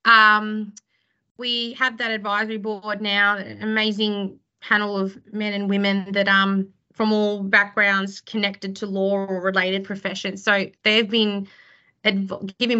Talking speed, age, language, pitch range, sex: 135 wpm, 20-39, English, 195-215 Hz, female